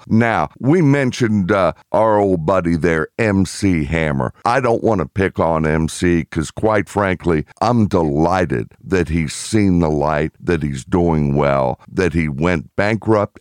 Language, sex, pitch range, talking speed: English, male, 90-120 Hz, 155 wpm